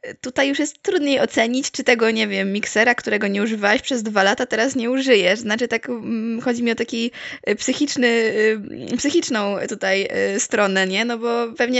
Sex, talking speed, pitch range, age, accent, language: female, 165 wpm, 215-250 Hz, 20-39, native, Polish